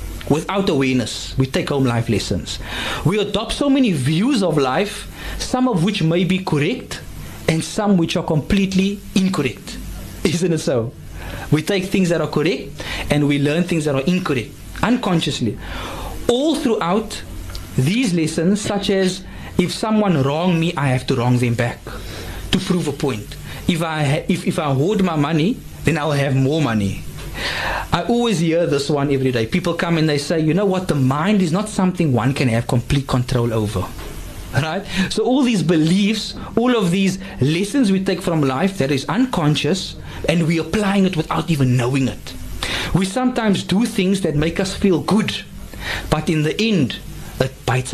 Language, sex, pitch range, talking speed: English, male, 130-195 Hz, 180 wpm